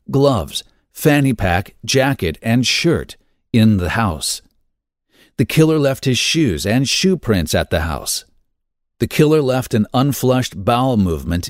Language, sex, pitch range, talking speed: English, male, 100-135 Hz, 140 wpm